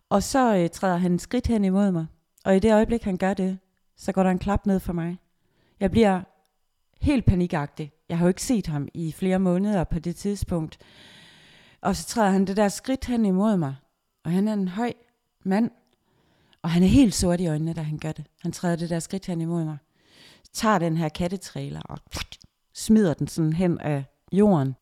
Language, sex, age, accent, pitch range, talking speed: Danish, female, 30-49, native, 155-195 Hz, 210 wpm